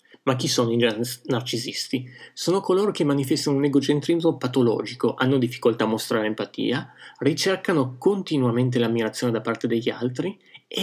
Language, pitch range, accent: Italian, 120-155 Hz, native